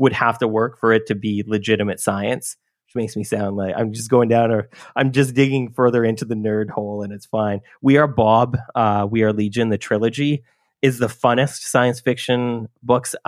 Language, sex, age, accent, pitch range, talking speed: English, male, 30-49, American, 100-125 Hz, 210 wpm